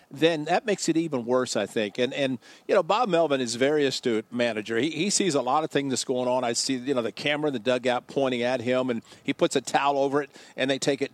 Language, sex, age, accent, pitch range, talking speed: English, male, 50-69, American, 130-165 Hz, 275 wpm